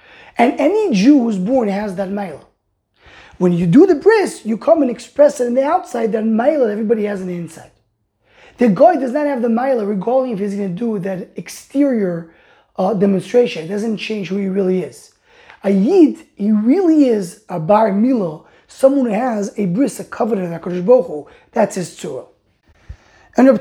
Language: English